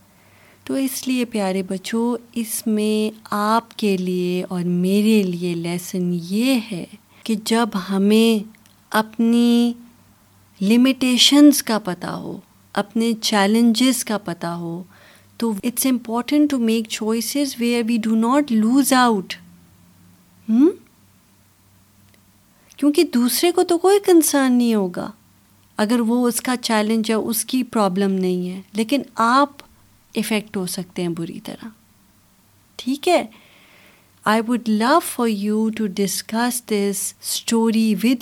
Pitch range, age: 185-235 Hz, 30-49